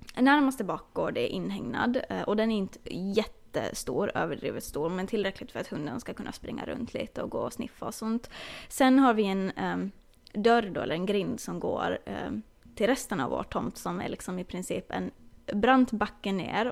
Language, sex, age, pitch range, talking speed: Swedish, female, 20-39, 195-250 Hz, 195 wpm